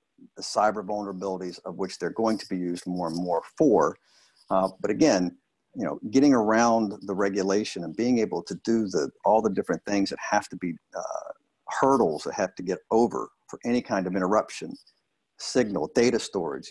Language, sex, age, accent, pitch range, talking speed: English, male, 50-69, American, 95-115 Hz, 185 wpm